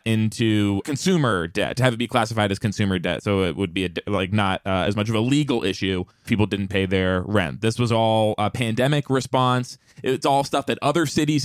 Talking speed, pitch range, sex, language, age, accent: 215 wpm, 105-140 Hz, male, English, 20-39, American